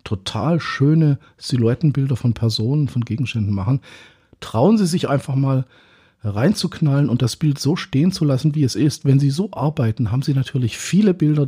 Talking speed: 175 wpm